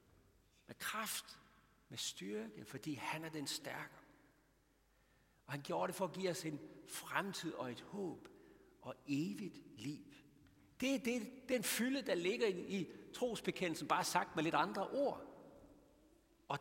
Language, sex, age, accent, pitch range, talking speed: Danish, male, 60-79, native, 140-195 Hz, 150 wpm